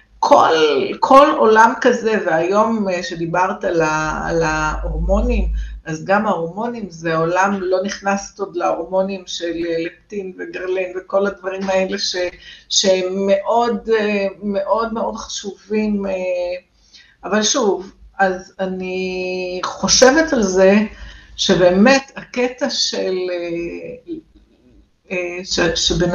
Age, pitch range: 50-69, 185-230 Hz